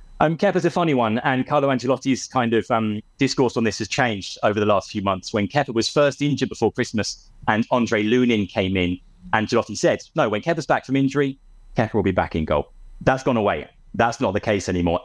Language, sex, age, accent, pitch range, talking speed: English, male, 30-49, British, 105-130 Hz, 220 wpm